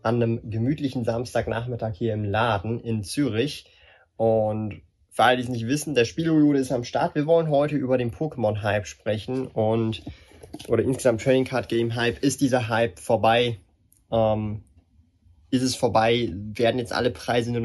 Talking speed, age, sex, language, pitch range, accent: 155 wpm, 20-39, male, German, 110-135 Hz, German